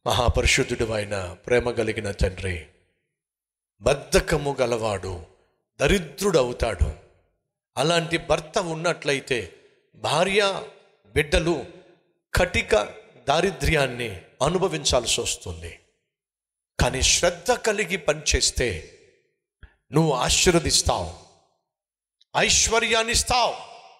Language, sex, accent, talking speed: Telugu, male, native, 55 wpm